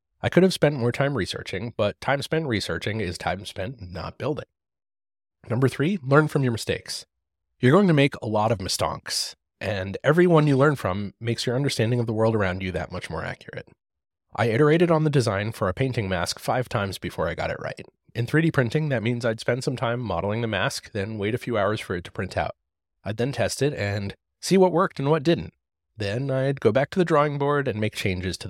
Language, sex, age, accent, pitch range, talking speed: English, male, 30-49, American, 95-135 Hz, 230 wpm